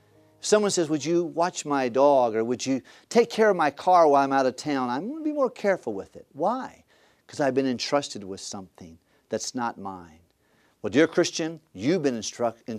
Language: English